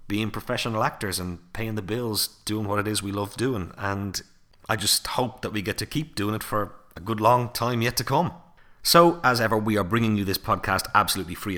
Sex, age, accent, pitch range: male, 30-49, Irish, 95-115 Hz